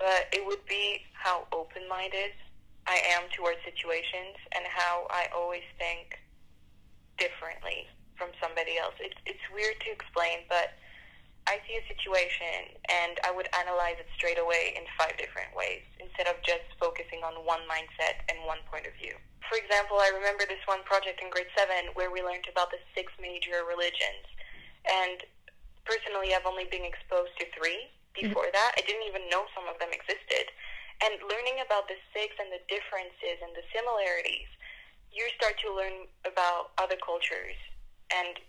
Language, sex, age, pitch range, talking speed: English, female, 10-29, 175-215 Hz, 165 wpm